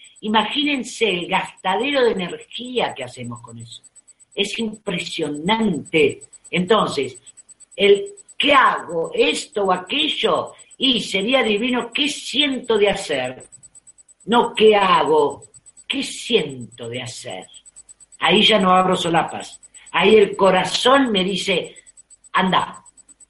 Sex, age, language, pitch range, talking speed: female, 50-69, Spanish, 180-235 Hz, 110 wpm